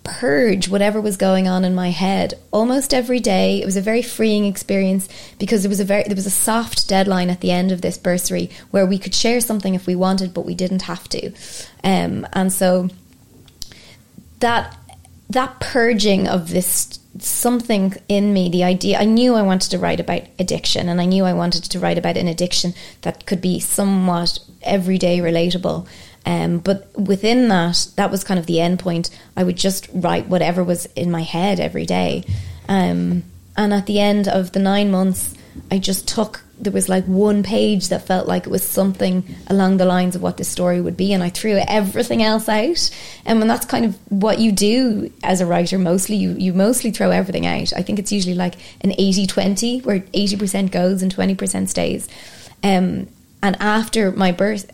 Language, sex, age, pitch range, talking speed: English, female, 20-39, 180-205 Hz, 200 wpm